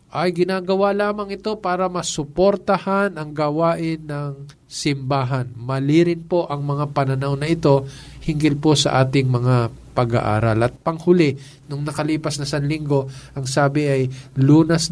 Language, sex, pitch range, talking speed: Filipino, male, 140-170 Hz, 135 wpm